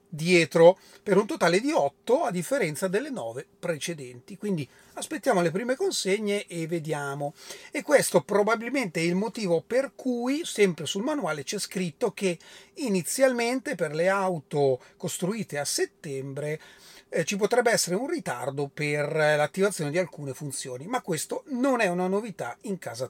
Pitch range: 160-205 Hz